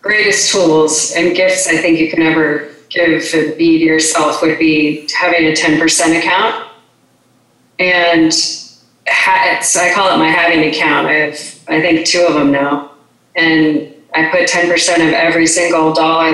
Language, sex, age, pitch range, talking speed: English, female, 30-49, 155-175 Hz, 160 wpm